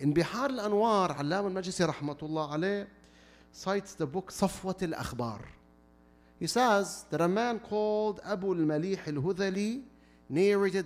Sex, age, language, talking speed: male, 40-59, English, 115 wpm